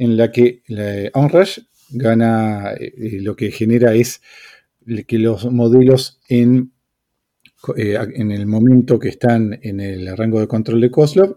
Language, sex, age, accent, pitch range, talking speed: English, male, 40-59, Argentinian, 105-130 Hz, 150 wpm